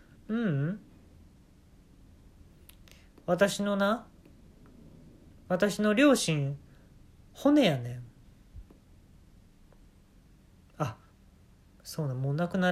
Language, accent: Japanese, native